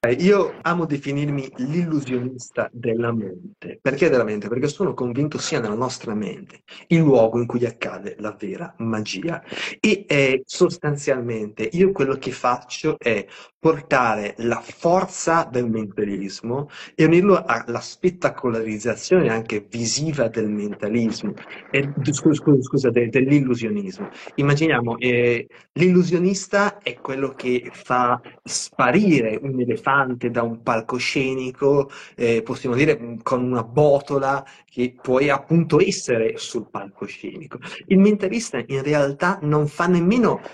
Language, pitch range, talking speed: Italian, 120-170 Hz, 120 wpm